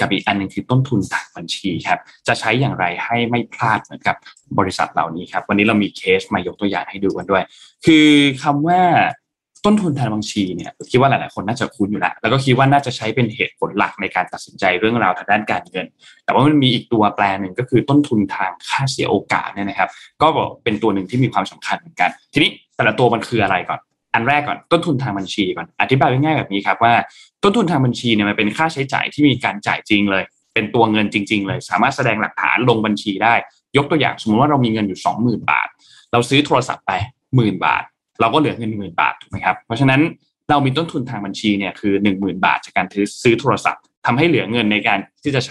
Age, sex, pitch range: 20-39, male, 105-140 Hz